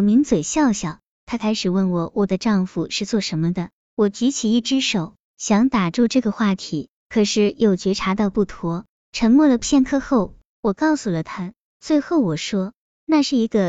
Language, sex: Chinese, male